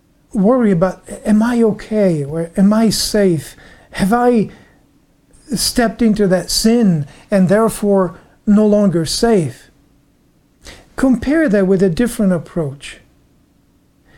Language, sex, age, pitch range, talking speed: English, male, 50-69, 180-235 Hz, 110 wpm